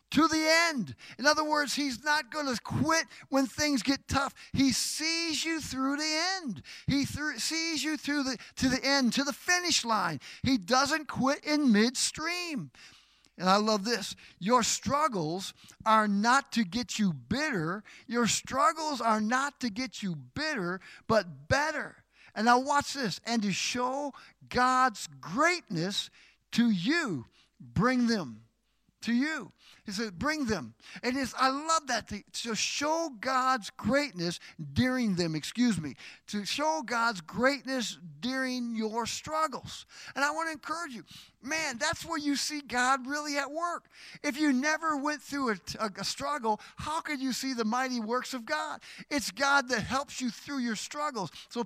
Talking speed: 165 wpm